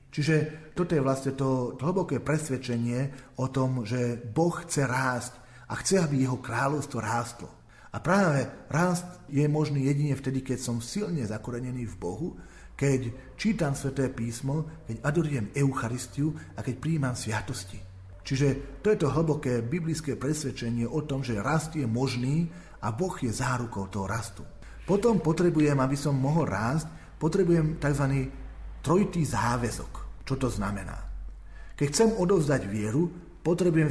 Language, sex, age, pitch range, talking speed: Slovak, male, 40-59, 115-155 Hz, 140 wpm